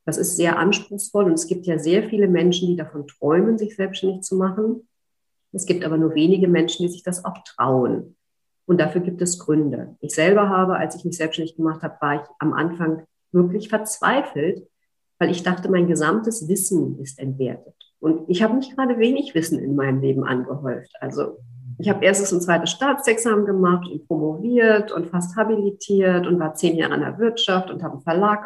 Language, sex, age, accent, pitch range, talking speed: German, female, 50-69, German, 155-200 Hz, 195 wpm